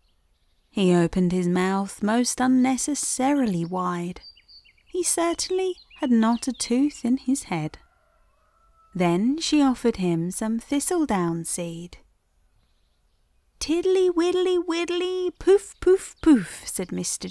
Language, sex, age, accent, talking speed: English, female, 30-49, British, 110 wpm